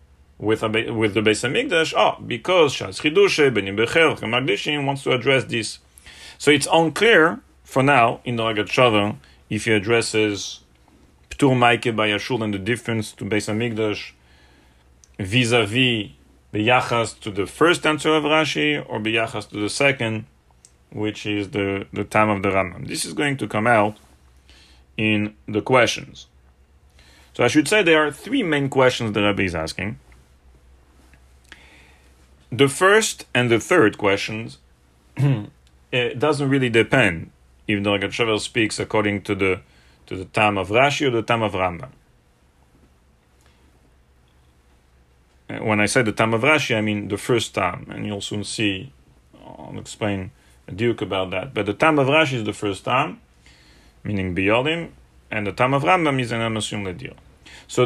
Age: 40-59